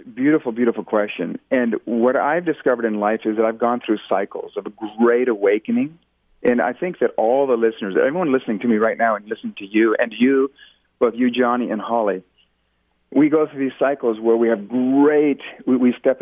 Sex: male